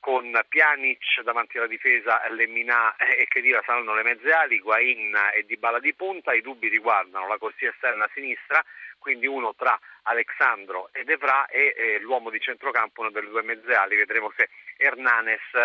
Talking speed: 175 wpm